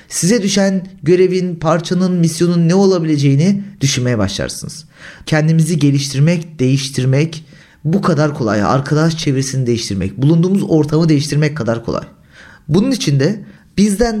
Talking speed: 110 wpm